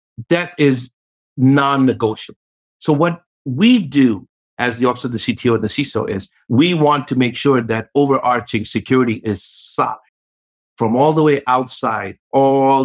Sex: male